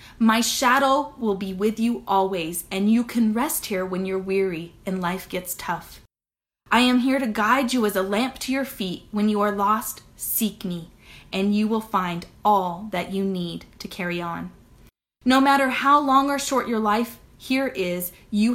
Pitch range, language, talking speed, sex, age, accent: 195-250 Hz, English, 190 wpm, female, 30-49, American